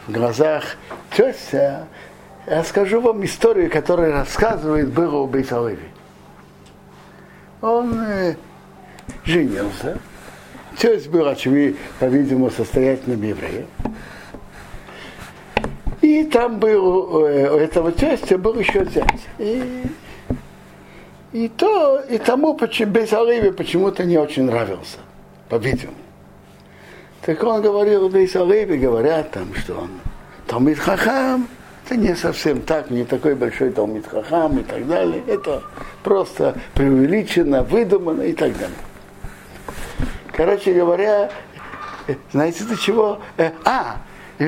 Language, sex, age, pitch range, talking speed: Russian, male, 60-79, 140-215 Hz, 100 wpm